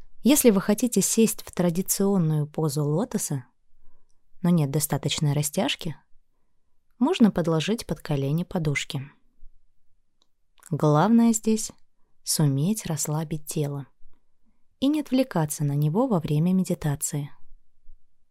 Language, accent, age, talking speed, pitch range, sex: Russian, native, 20-39, 100 wpm, 150-220 Hz, female